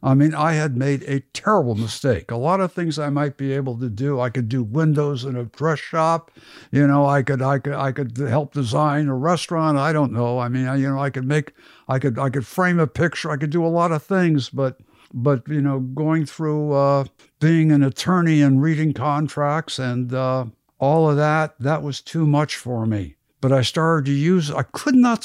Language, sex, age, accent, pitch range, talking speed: English, male, 60-79, American, 140-165 Hz, 225 wpm